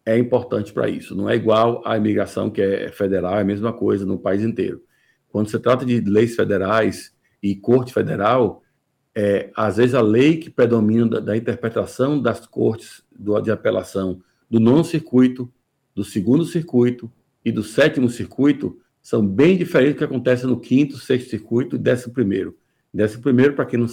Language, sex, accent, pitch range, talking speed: Portuguese, male, Brazilian, 105-125 Hz, 180 wpm